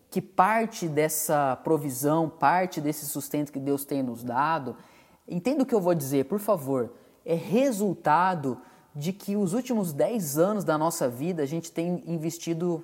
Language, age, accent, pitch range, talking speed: Portuguese, 20-39, Brazilian, 145-190 Hz, 165 wpm